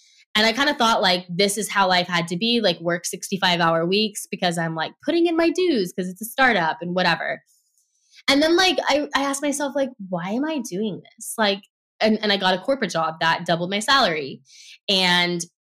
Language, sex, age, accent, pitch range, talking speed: English, female, 10-29, American, 180-265 Hz, 220 wpm